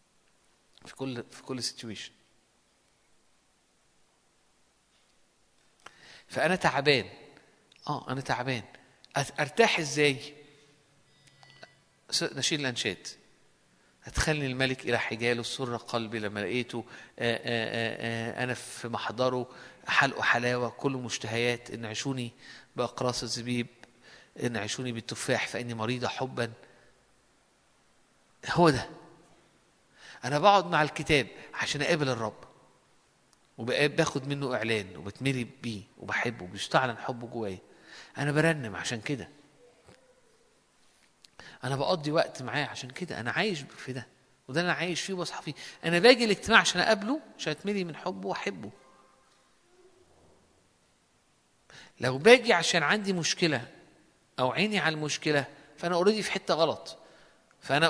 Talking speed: 110 wpm